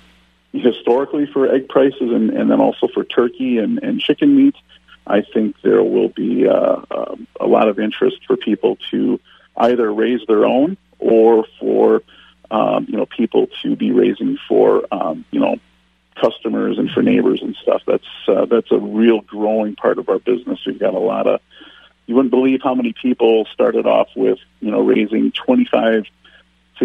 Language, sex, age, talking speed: English, male, 40-59, 180 wpm